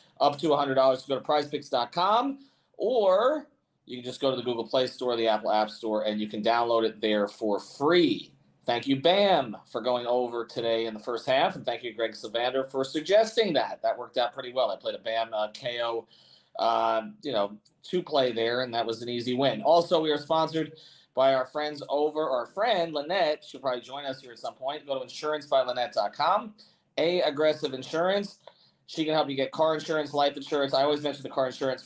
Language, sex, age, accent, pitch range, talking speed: English, male, 30-49, American, 115-150 Hz, 210 wpm